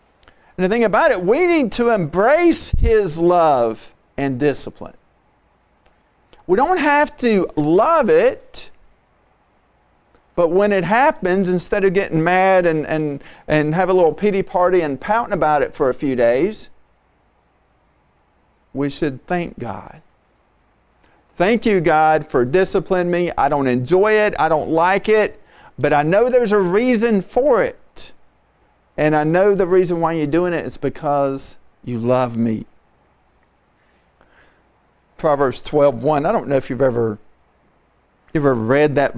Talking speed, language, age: 145 wpm, English, 40-59